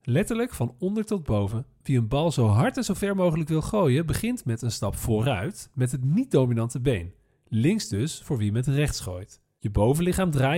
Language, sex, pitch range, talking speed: Dutch, male, 115-175 Hz, 200 wpm